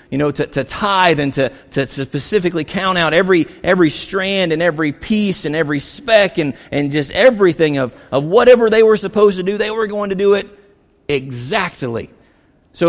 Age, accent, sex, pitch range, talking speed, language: 40-59, American, male, 135-195 Hz, 185 wpm, English